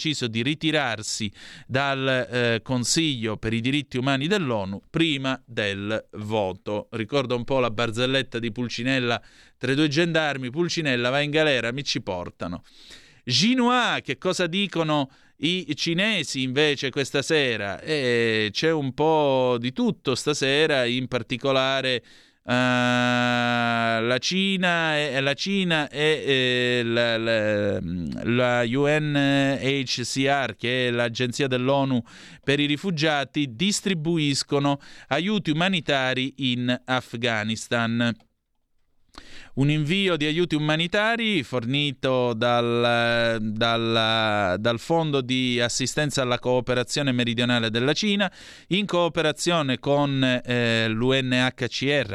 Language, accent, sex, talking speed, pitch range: Italian, native, male, 110 wpm, 120-150 Hz